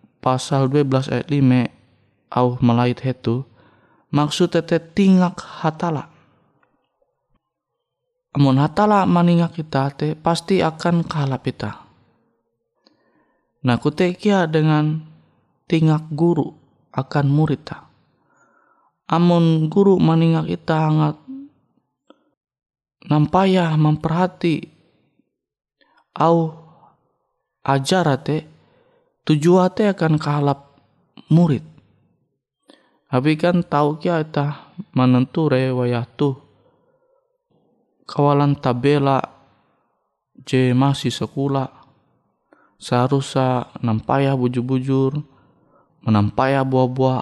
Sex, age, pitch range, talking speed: male, 20-39, 125-165 Hz, 70 wpm